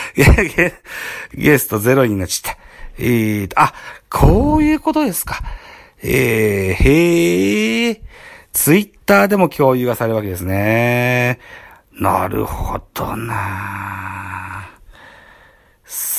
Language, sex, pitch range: Japanese, male, 95-135 Hz